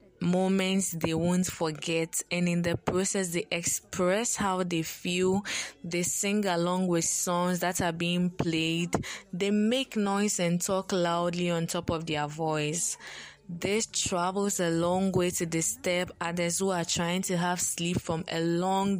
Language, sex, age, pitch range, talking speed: English, female, 20-39, 165-190 Hz, 160 wpm